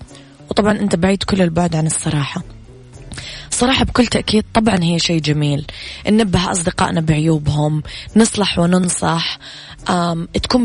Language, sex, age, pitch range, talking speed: Arabic, female, 20-39, 160-210 Hz, 120 wpm